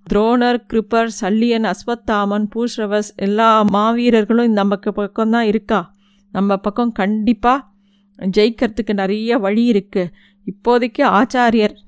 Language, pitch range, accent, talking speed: Tamil, 195-225 Hz, native, 100 wpm